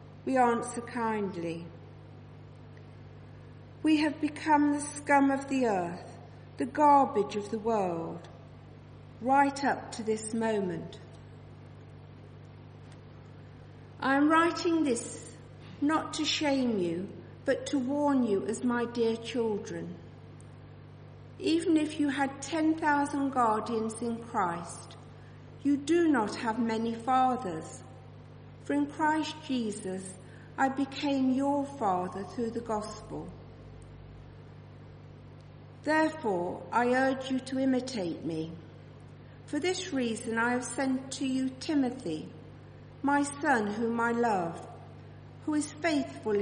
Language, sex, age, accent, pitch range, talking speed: English, female, 50-69, British, 180-275 Hz, 110 wpm